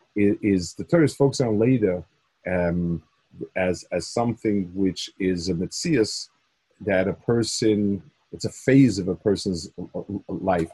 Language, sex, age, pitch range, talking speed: English, male, 40-59, 100-135 Hz, 135 wpm